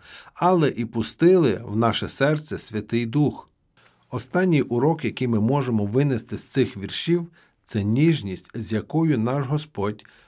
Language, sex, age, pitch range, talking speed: Ukrainian, male, 50-69, 110-150 Hz, 135 wpm